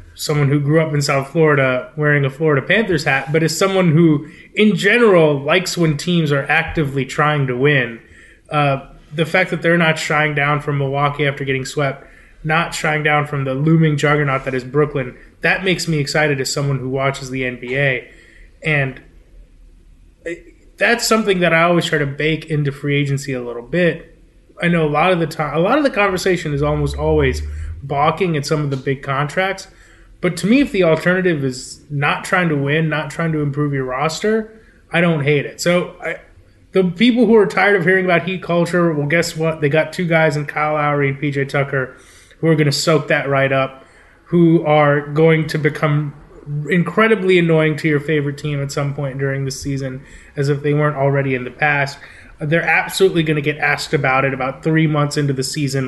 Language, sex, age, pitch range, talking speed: English, male, 20-39, 140-165 Hz, 200 wpm